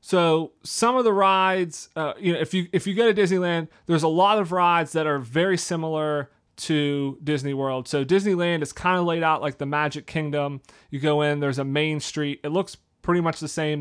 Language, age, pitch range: English, 30-49, 145-175 Hz